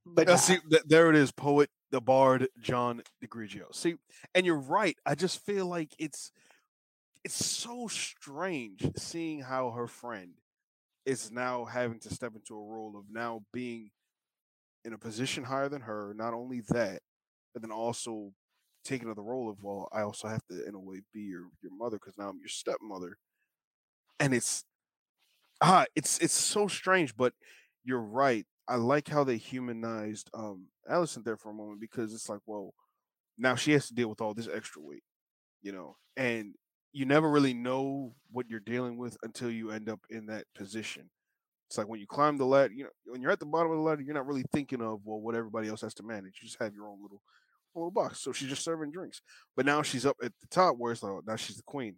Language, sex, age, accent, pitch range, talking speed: English, male, 20-39, American, 110-140 Hz, 210 wpm